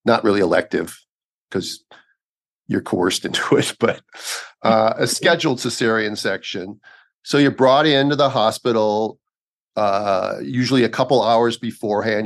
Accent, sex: American, male